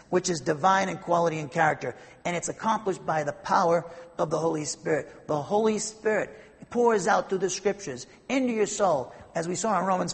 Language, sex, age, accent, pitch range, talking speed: English, male, 50-69, American, 165-220 Hz, 195 wpm